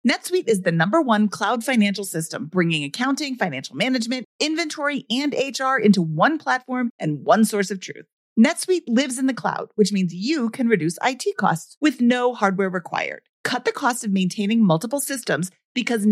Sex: female